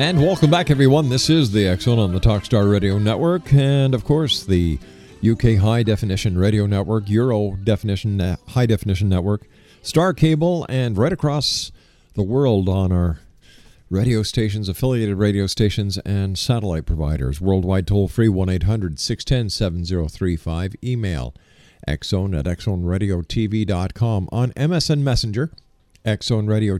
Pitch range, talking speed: 95-135 Hz, 125 wpm